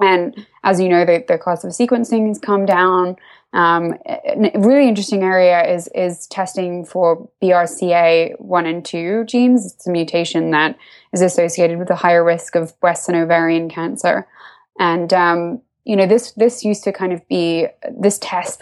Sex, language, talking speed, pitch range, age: female, English, 170 wpm, 170-200 Hz, 20-39